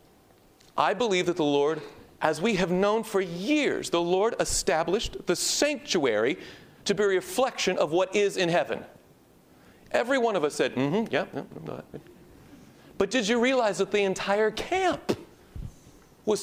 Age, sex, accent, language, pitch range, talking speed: 40-59, male, American, English, 170-225 Hz, 155 wpm